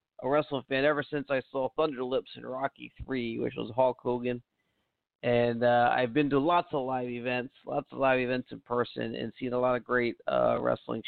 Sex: male